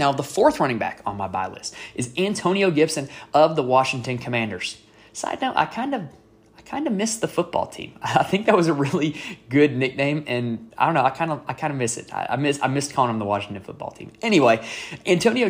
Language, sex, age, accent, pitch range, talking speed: English, male, 20-39, American, 120-155 Hz, 230 wpm